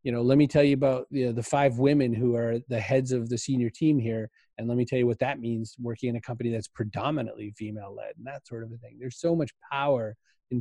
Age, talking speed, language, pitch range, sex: 30-49, 260 wpm, English, 120-155 Hz, male